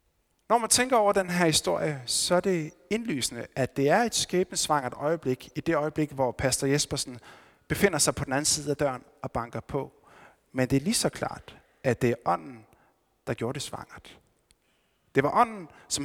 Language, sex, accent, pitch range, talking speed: Danish, male, native, 130-170 Hz, 195 wpm